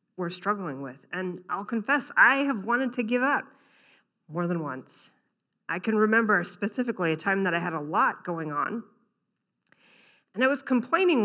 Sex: female